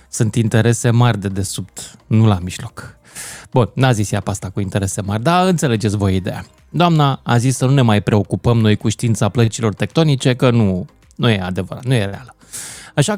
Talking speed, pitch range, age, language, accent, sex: 190 wpm, 110-170 Hz, 20-39, Romanian, native, male